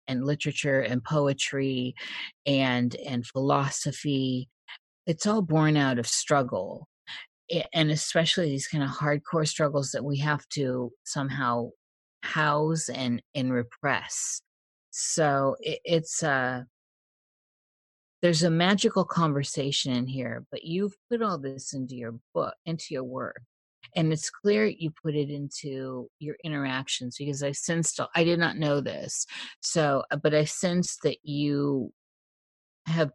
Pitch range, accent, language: 130-165 Hz, American, English